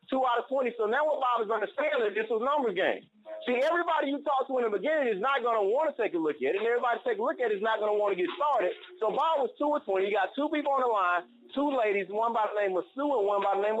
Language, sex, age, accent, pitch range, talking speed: English, male, 30-49, American, 230-315 Hz, 340 wpm